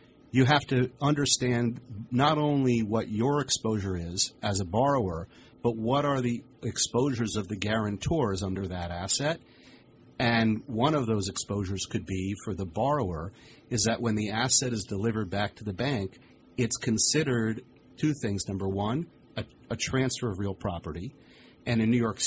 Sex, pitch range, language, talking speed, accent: male, 100-125 Hz, English, 165 wpm, American